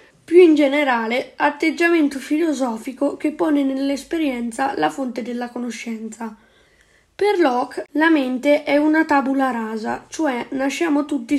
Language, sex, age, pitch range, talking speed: Italian, female, 10-29, 240-300 Hz, 120 wpm